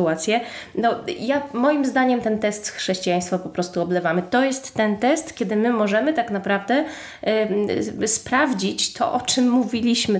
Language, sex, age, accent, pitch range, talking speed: Polish, female, 20-39, native, 195-250 Hz, 160 wpm